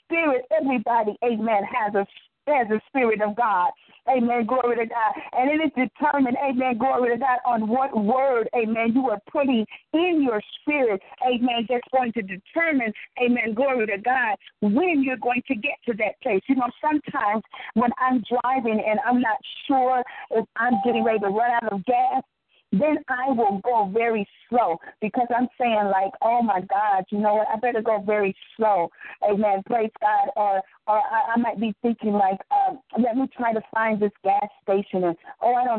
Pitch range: 215-260 Hz